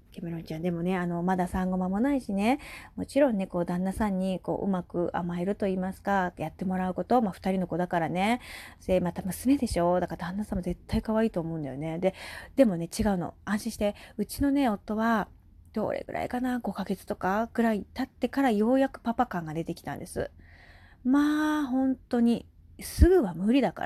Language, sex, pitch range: Japanese, female, 175-245 Hz